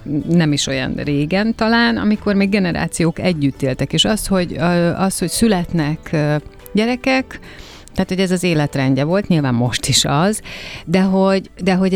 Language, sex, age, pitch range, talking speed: Hungarian, female, 30-49, 140-180 Hz, 155 wpm